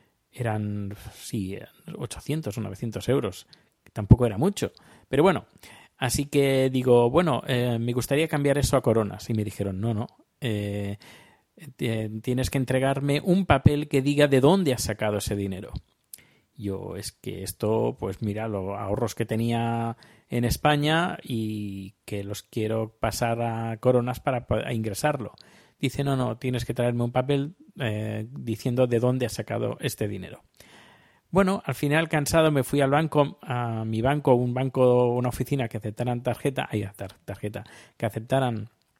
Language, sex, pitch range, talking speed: Spanish, male, 110-135 Hz, 155 wpm